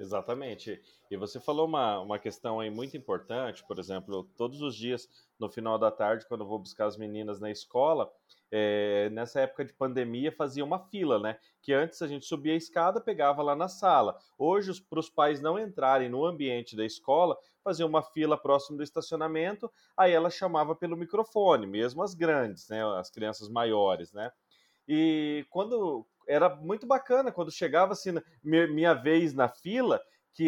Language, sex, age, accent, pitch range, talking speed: Portuguese, male, 30-49, Brazilian, 135-200 Hz, 175 wpm